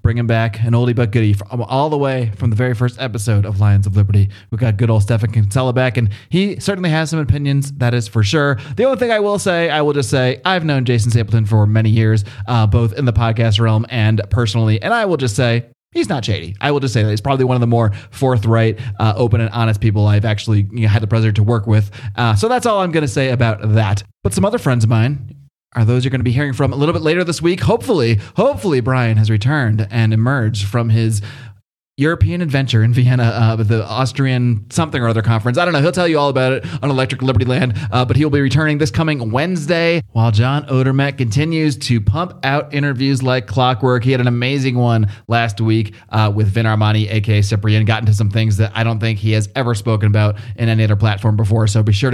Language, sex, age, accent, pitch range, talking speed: English, male, 30-49, American, 110-140 Hz, 245 wpm